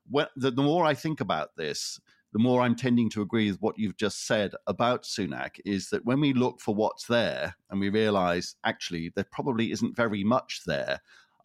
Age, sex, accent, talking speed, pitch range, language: 50-69, male, British, 200 wpm, 95-125 Hz, English